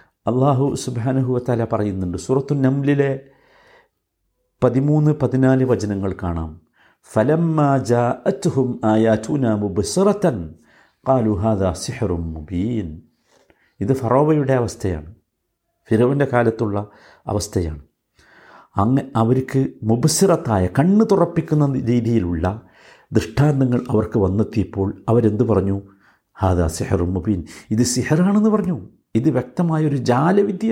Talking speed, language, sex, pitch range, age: 80 wpm, Malayalam, male, 105-150 Hz, 50-69